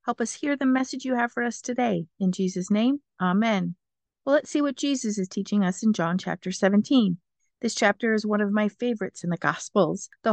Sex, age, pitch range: female, 50-69, 190-235 Hz